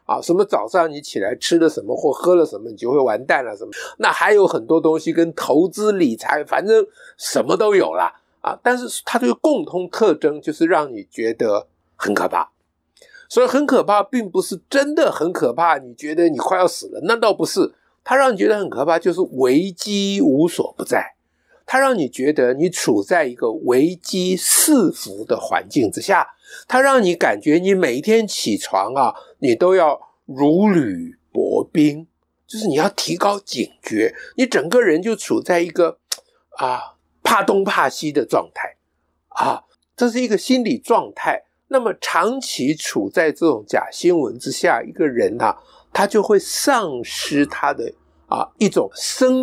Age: 50-69